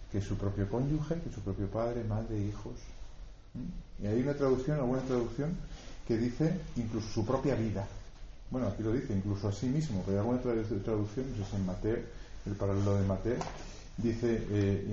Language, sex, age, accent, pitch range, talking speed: Spanish, male, 40-59, Spanish, 95-110 Hz, 190 wpm